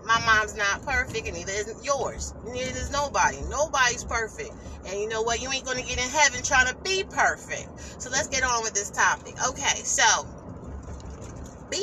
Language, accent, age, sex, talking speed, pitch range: English, American, 30-49, female, 190 wpm, 205-255 Hz